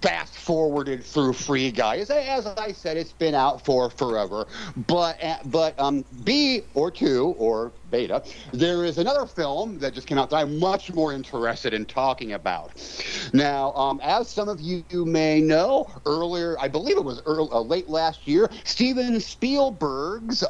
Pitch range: 120-180 Hz